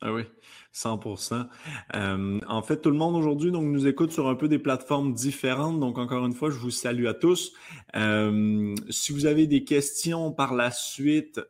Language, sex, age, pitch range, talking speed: French, male, 30-49, 100-135 Hz, 195 wpm